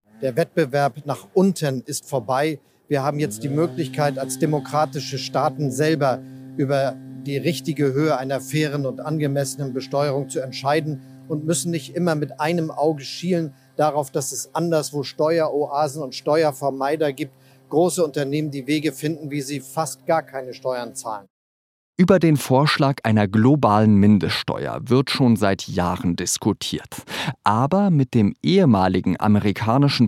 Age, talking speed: 40-59, 140 wpm